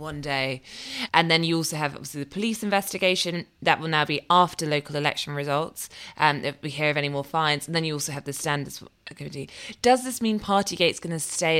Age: 20-39